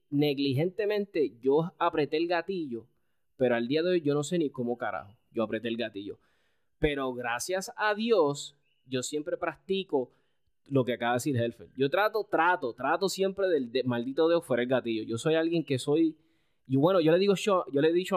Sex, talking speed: male, 200 wpm